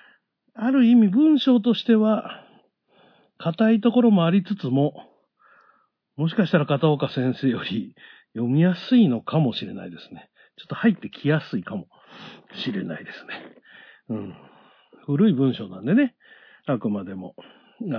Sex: male